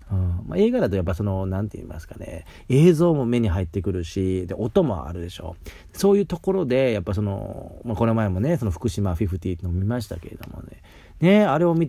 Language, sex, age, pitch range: Japanese, male, 40-59, 90-115 Hz